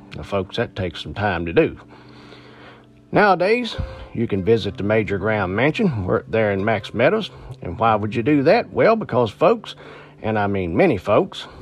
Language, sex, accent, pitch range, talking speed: English, male, American, 95-130 Hz, 175 wpm